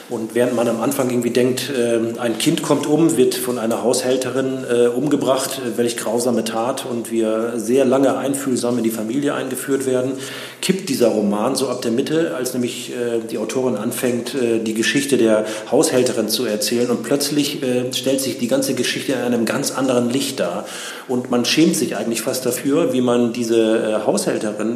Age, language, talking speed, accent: 40-59, German, 170 wpm, German